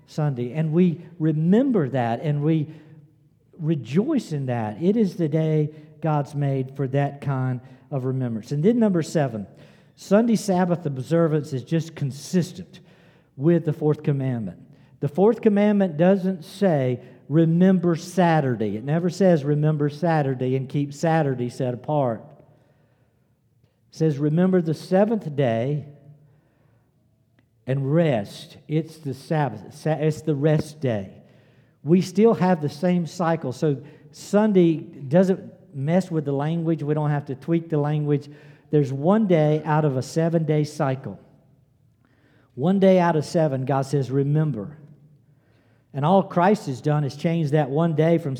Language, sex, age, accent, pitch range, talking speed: English, male, 50-69, American, 140-170 Hz, 145 wpm